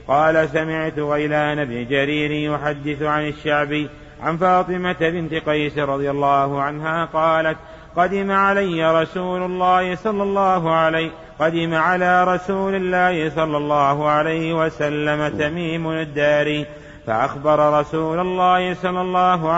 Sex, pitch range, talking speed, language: male, 150-165 Hz, 115 wpm, Arabic